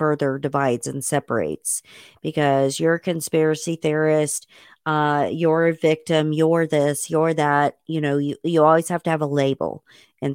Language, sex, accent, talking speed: English, female, American, 160 wpm